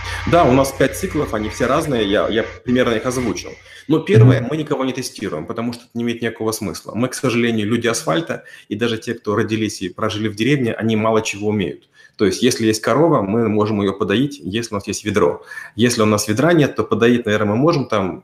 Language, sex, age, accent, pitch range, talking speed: Russian, male, 30-49, native, 105-130 Hz, 225 wpm